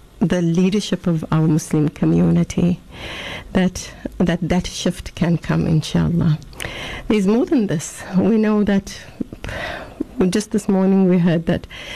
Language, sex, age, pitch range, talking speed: English, female, 60-79, 165-200 Hz, 130 wpm